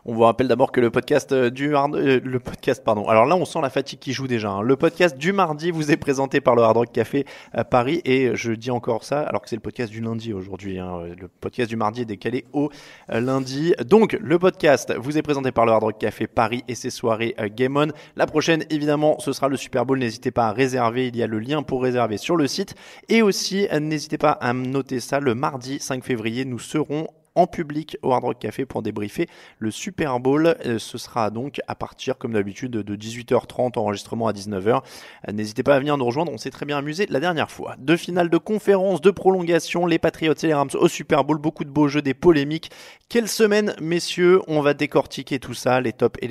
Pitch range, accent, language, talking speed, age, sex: 115-160 Hz, French, French, 230 wpm, 20-39, male